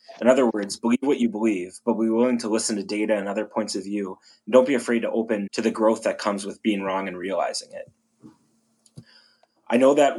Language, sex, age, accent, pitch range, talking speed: English, male, 30-49, American, 105-115 Hz, 230 wpm